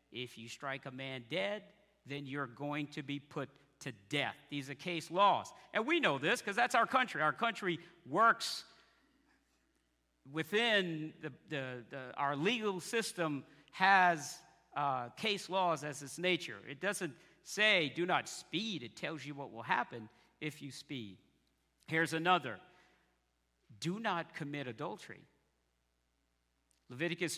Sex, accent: male, American